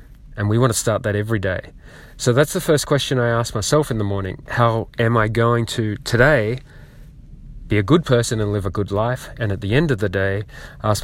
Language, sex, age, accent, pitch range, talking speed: English, male, 30-49, Australian, 100-125 Hz, 230 wpm